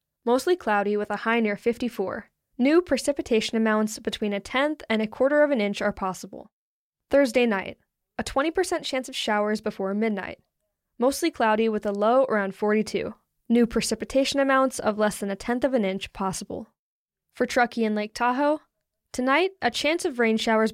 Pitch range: 210-270 Hz